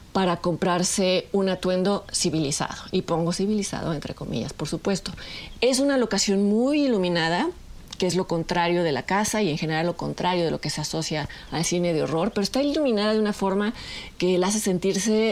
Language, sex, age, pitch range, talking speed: Spanish, female, 40-59, 165-205 Hz, 190 wpm